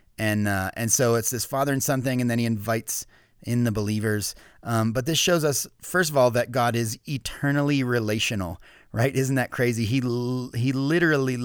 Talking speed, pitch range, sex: 195 wpm, 110-135 Hz, male